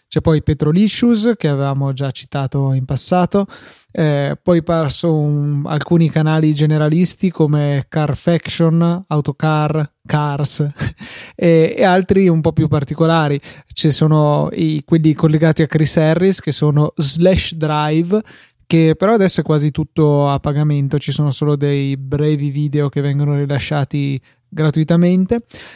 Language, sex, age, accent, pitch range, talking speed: Italian, male, 20-39, native, 145-175 Hz, 135 wpm